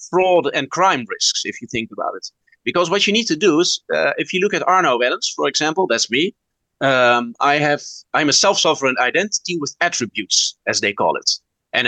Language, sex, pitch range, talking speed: English, male, 130-190 Hz, 205 wpm